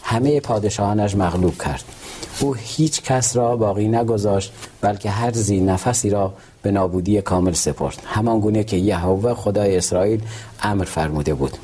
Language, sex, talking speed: Persian, male, 140 wpm